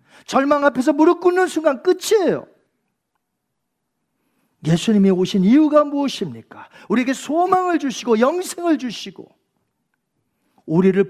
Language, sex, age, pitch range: Korean, male, 40-59, 200-310 Hz